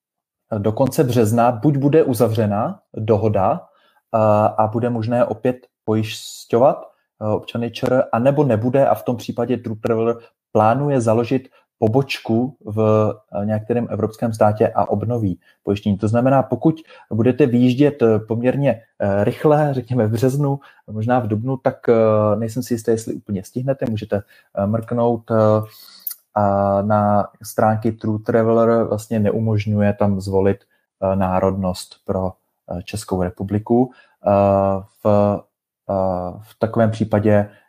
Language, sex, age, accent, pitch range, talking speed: Czech, male, 20-39, native, 105-120 Hz, 110 wpm